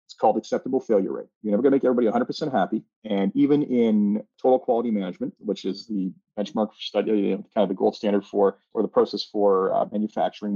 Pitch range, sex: 105-135 Hz, male